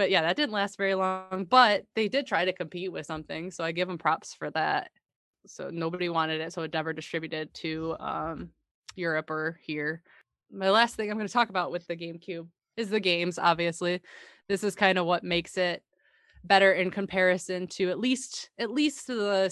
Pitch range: 165-200 Hz